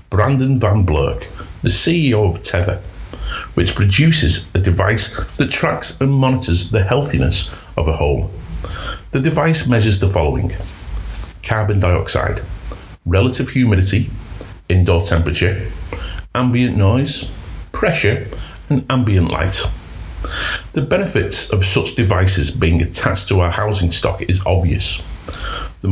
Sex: male